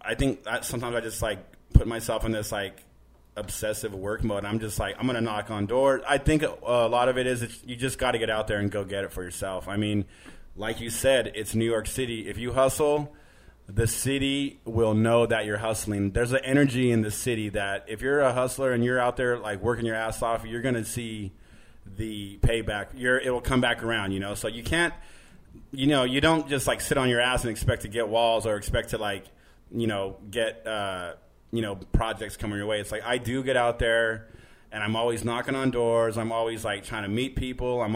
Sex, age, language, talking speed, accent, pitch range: male, 30-49, English, 235 wpm, American, 105-125 Hz